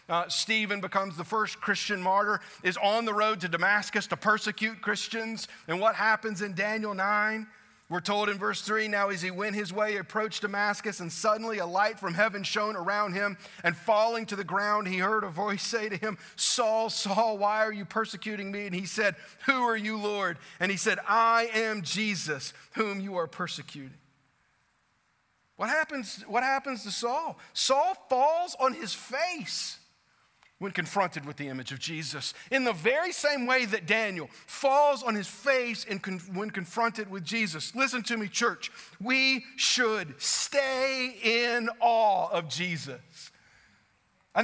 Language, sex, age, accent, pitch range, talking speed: English, male, 40-59, American, 190-230 Hz, 170 wpm